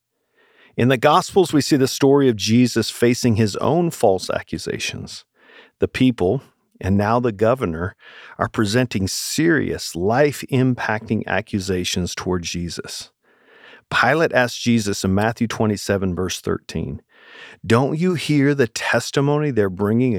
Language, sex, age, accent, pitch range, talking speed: English, male, 50-69, American, 100-130 Hz, 125 wpm